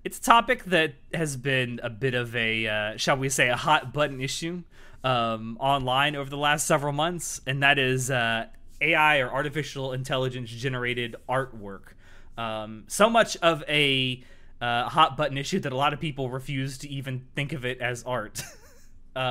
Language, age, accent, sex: English, 20-39, American, male